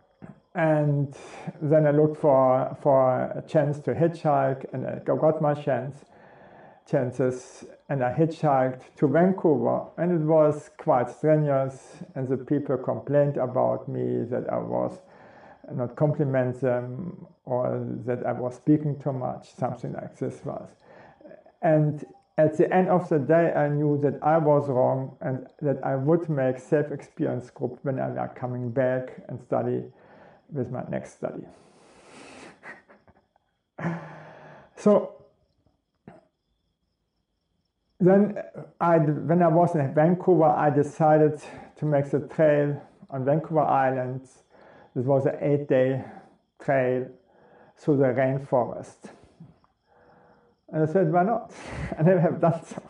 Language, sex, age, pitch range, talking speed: English, male, 50-69, 130-160 Hz, 130 wpm